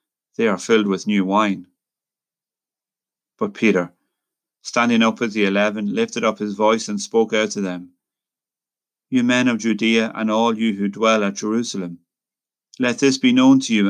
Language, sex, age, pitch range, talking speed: English, male, 40-59, 105-130 Hz, 170 wpm